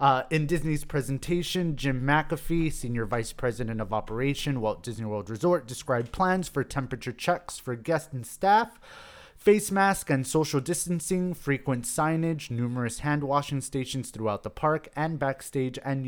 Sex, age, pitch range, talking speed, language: male, 30-49, 120-155 Hz, 150 wpm, English